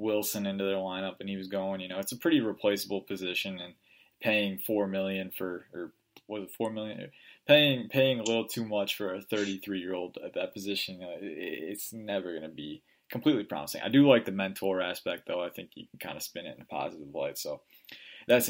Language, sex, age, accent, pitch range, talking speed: English, male, 20-39, American, 95-110 Hz, 210 wpm